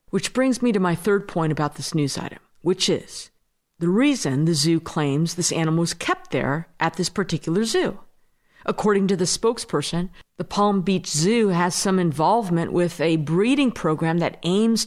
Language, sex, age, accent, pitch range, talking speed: English, female, 50-69, American, 165-235 Hz, 180 wpm